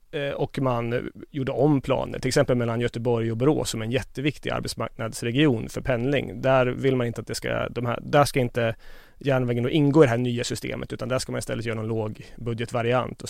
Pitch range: 115-140 Hz